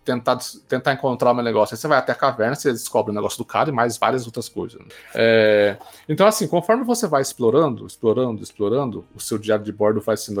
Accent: Brazilian